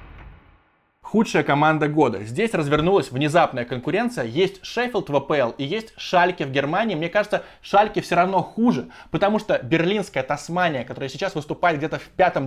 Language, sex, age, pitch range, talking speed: Russian, male, 20-39, 145-195 Hz, 150 wpm